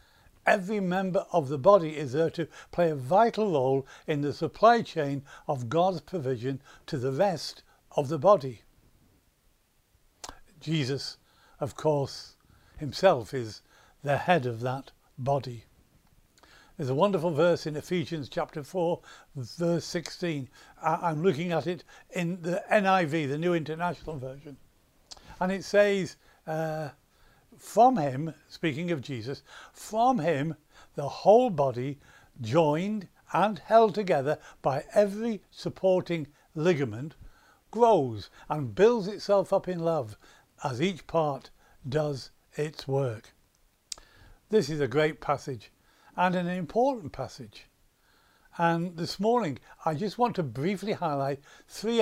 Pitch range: 140-185 Hz